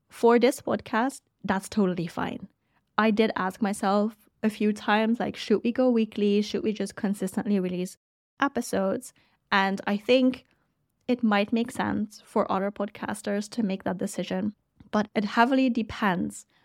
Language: English